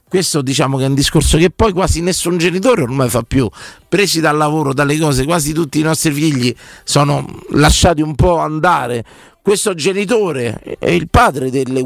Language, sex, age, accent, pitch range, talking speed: Italian, male, 40-59, native, 140-195 Hz, 175 wpm